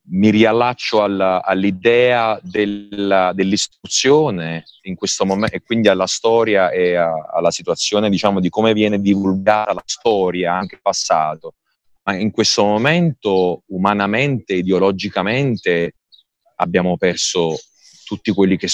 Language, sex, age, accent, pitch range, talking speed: Italian, male, 30-49, native, 95-120 Hz, 120 wpm